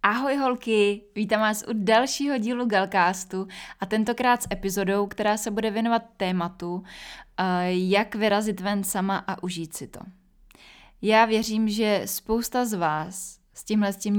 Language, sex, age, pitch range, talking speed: Czech, female, 20-39, 175-205 Hz, 150 wpm